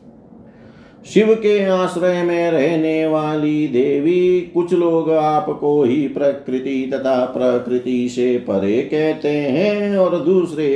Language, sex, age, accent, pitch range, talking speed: Hindi, male, 50-69, native, 120-155 Hz, 110 wpm